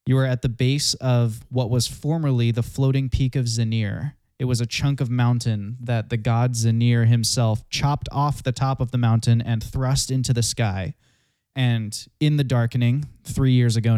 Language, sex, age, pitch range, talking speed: English, male, 20-39, 115-130 Hz, 190 wpm